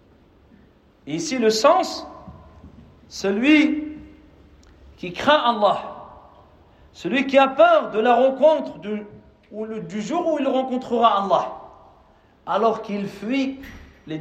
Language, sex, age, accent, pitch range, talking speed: French, male, 40-59, French, 190-265 Hz, 120 wpm